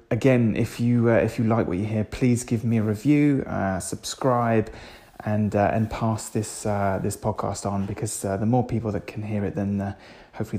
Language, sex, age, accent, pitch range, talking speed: English, male, 30-49, British, 105-125 Hz, 215 wpm